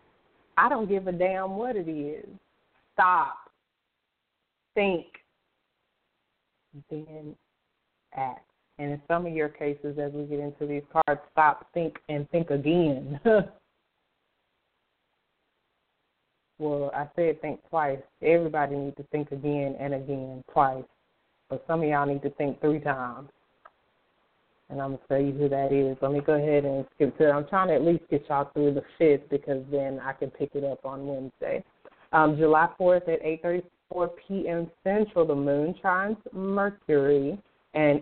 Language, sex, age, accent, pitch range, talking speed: English, female, 20-39, American, 140-170 Hz, 155 wpm